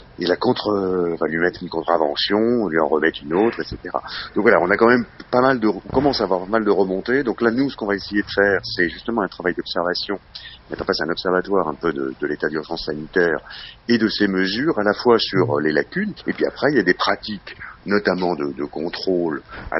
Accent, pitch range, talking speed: French, 80-105 Hz, 235 wpm